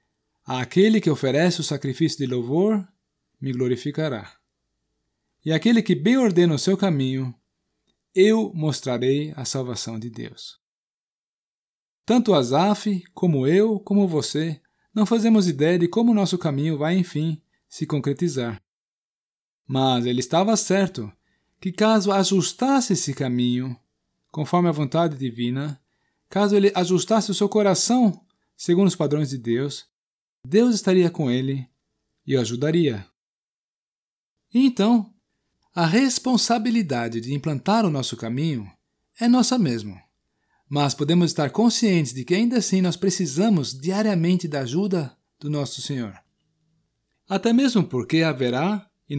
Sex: male